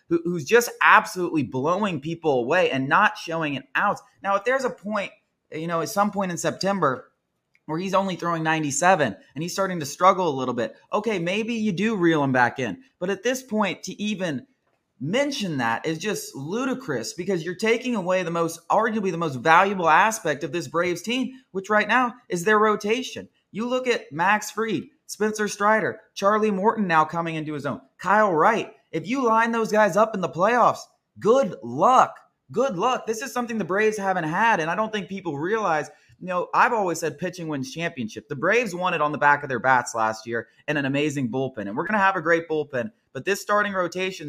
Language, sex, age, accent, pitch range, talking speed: English, male, 20-39, American, 150-210 Hz, 210 wpm